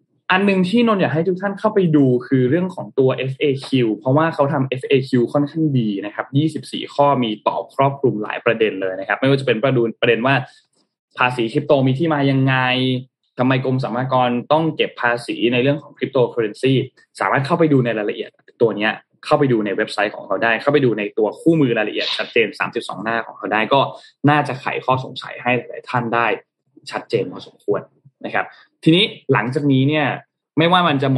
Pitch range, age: 125-150 Hz, 20-39